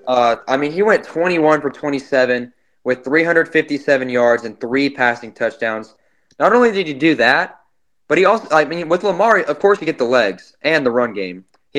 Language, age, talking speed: English, 20-39, 205 wpm